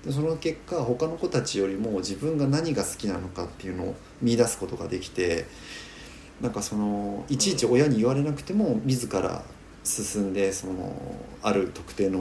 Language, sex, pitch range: Japanese, male, 85-115 Hz